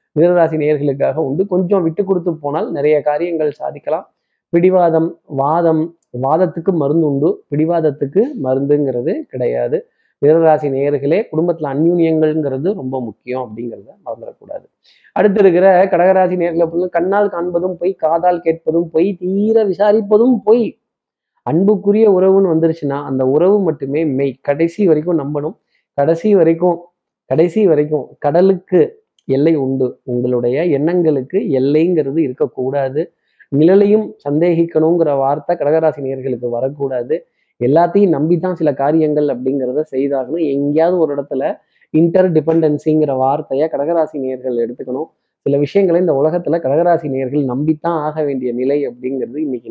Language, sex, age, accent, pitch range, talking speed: Tamil, male, 20-39, native, 140-175 Hz, 110 wpm